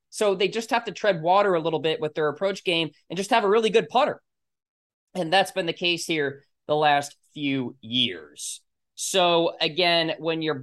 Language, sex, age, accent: English, male, 20-39, American